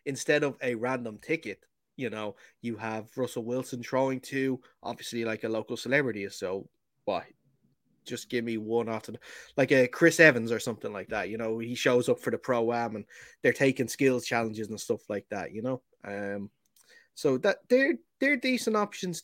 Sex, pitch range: male, 110-155 Hz